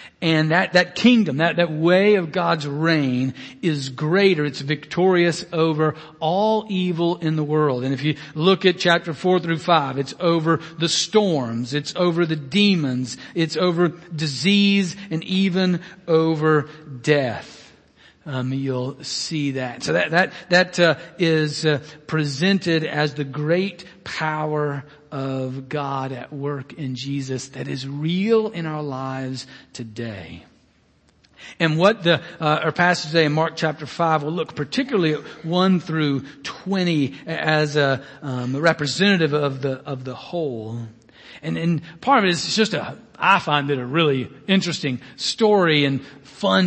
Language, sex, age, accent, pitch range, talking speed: English, male, 50-69, American, 140-175 Hz, 150 wpm